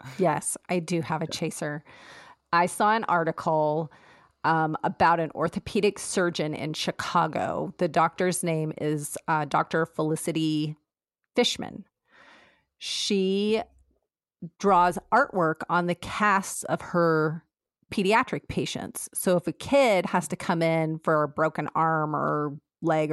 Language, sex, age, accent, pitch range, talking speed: English, female, 30-49, American, 160-200 Hz, 125 wpm